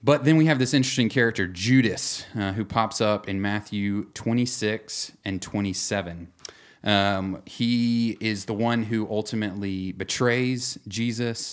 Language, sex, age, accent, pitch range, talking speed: English, male, 30-49, American, 95-115 Hz, 135 wpm